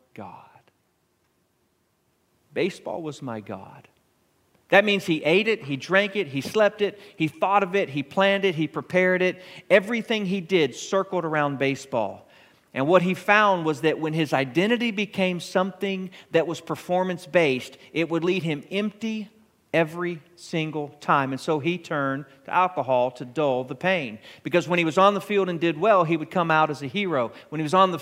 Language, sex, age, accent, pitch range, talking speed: English, male, 40-59, American, 145-185 Hz, 185 wpm